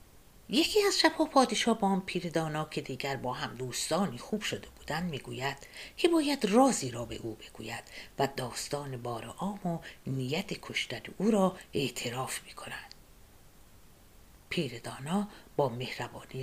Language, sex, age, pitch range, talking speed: Persian, female, 50-69, 135-205 Hz, 135 wpm